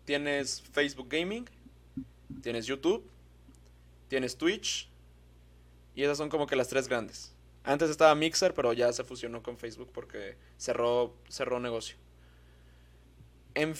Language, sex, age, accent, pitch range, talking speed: Spanish, male, 20-39, Mexican, 110-150 Hz, 125 wpm